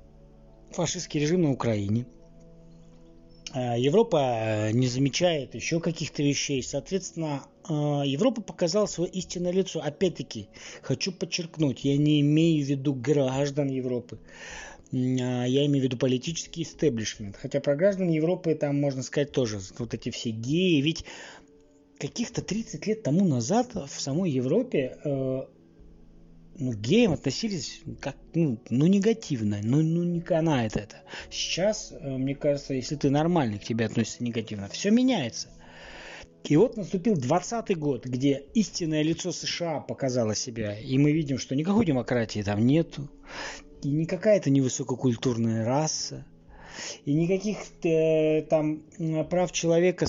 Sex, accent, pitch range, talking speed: male, native, 125-165 Hz, 130 wpm